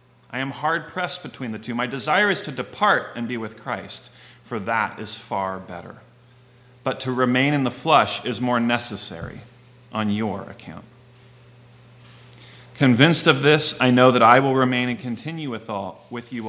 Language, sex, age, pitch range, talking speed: English, male, 30-49, 110-140 Hz, 170 wpm